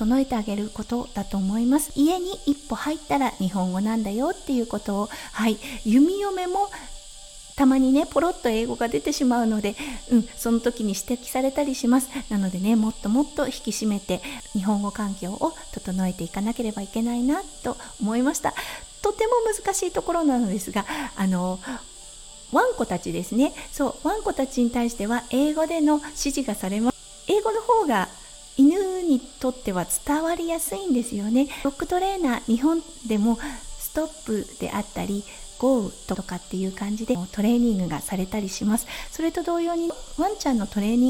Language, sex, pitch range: Japanese, female, 210-295 Hz